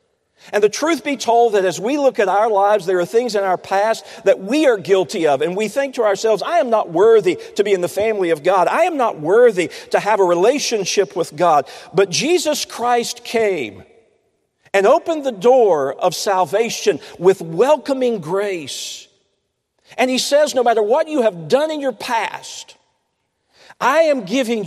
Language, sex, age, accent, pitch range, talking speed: English, male, 50-69, American, 155-250 Hz, 185 wpm